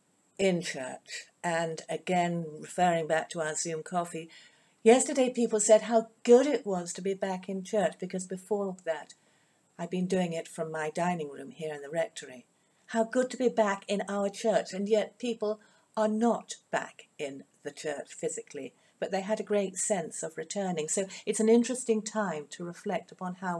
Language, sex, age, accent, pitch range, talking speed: English, female, 50-69, British, 165-210 Hz, 185 wpm